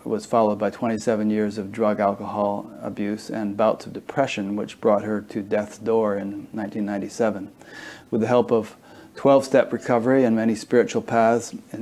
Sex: male